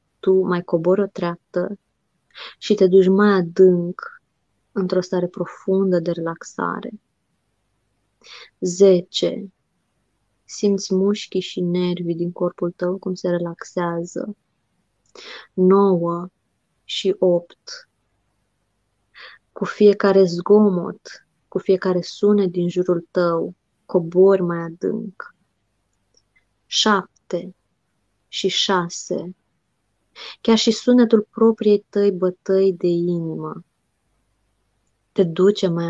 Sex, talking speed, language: female, 90 wpm, Romanian